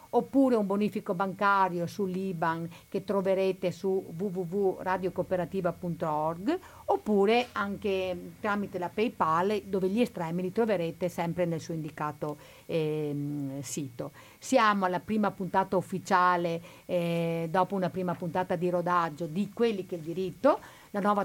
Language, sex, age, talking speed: Italian, female, 50-69, 125 wpm